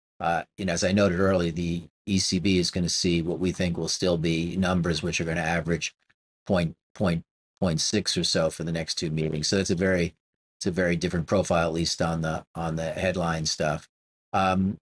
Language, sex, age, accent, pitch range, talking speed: English, male, 40-59, American, 85-105 Hz, 215 wpm